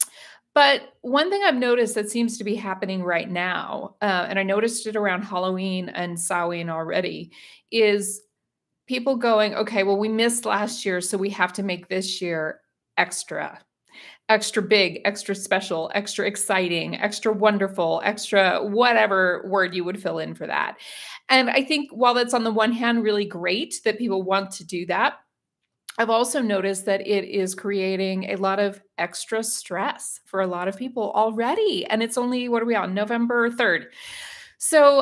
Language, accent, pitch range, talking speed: English, American, 185-235 Hz, 175 wpm